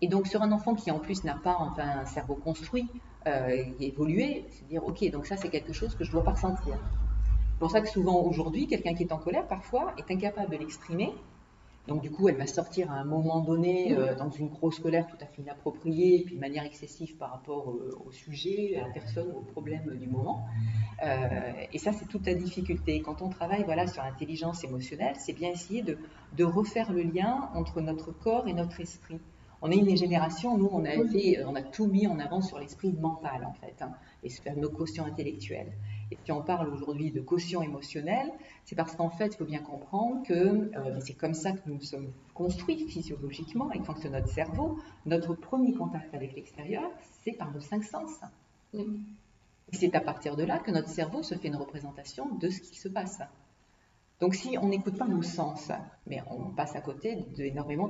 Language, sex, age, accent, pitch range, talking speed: French, female, 40-59, French, 145-195 Hz, 215 wpm